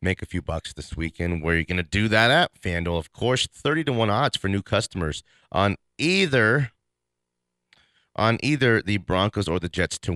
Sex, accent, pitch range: male, American, 80-105 Hz